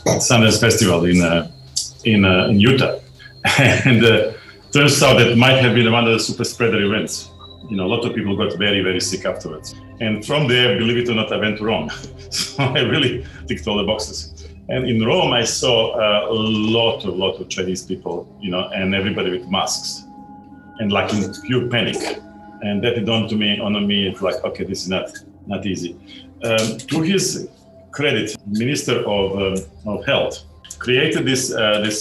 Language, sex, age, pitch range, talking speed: English, male, 40-59, 95-120 Hz, 200 wpm